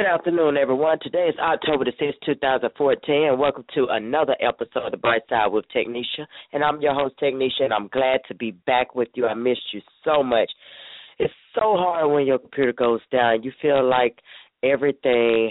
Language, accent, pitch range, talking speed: English, American, 125-155 Hz, 195 wpm